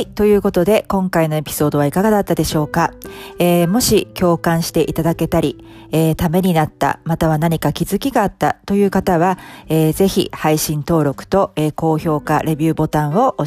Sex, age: female, 40-59